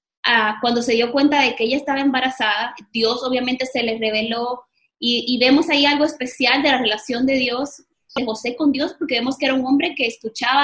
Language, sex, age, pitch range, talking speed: Spanish, female, 20-39, 235-295 Hz, 215 wpm